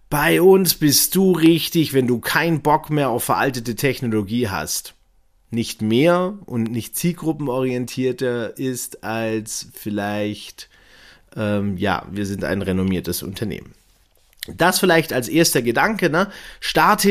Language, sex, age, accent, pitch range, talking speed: German, male, 30-49, German, 115-165 Hz, 125 wpm